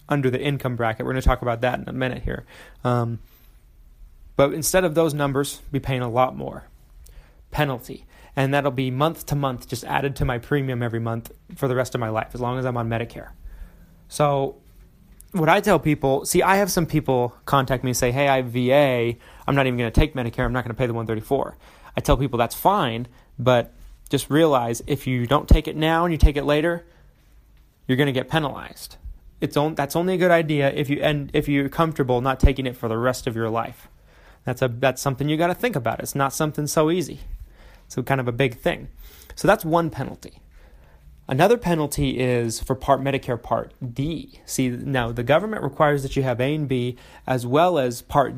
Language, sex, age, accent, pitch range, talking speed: English, male, 30-49, American, 120-145 Hz, 220 wpm